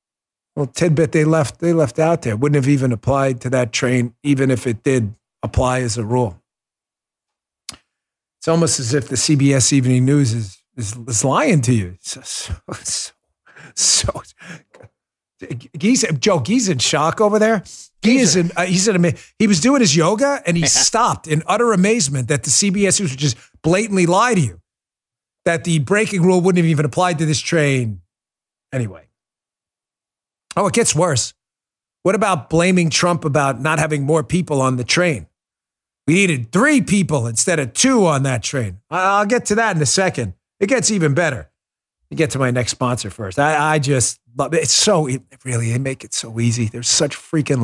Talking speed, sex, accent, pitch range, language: 190 wpm, male, American, 120-175 Hz, English